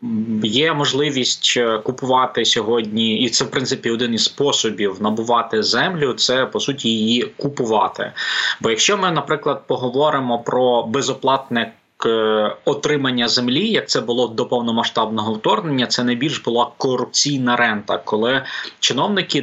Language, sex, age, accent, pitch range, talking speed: Ukrainian, male, 20-39, native, 115-135 Hz, 125 wpm